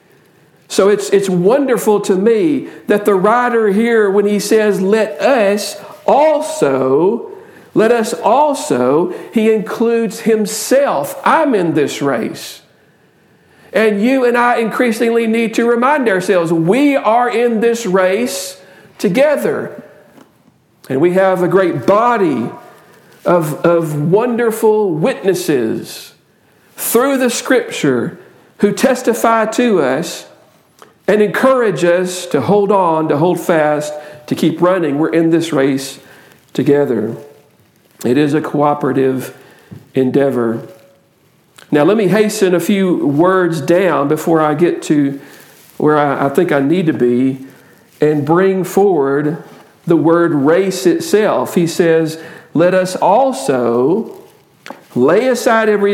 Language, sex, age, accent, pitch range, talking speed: English, male, 50-69, American, 160-225 Hz, 120 wpm